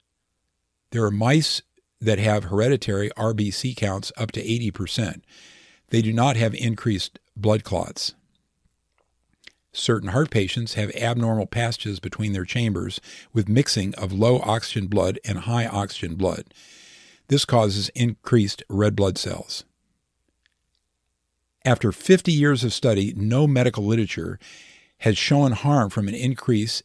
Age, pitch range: 50-69, 100-120 Hz